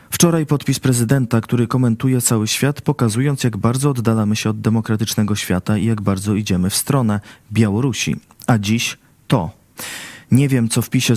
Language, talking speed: Polish, 160 wpm